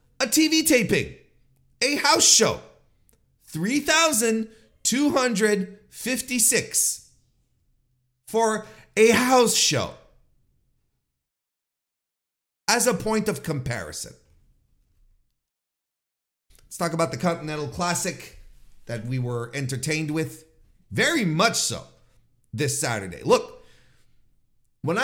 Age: 40-59